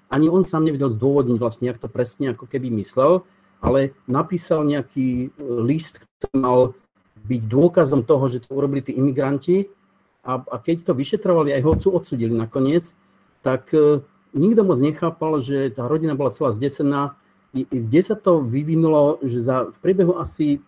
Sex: male